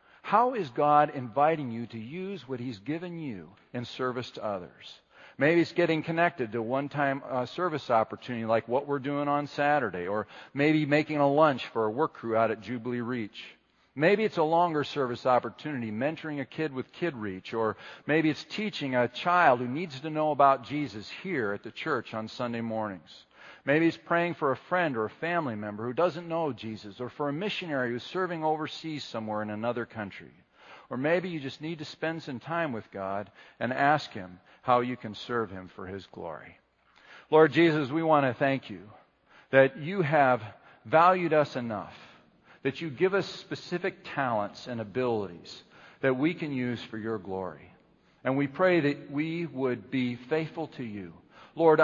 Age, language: 50-69, English